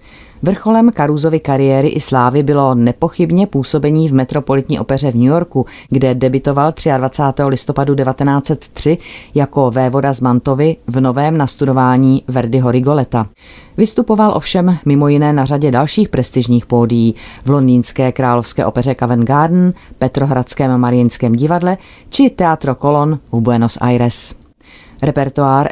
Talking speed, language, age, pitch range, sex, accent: 120 wpm, Czech, 30-49, 125-150 Hz, female, native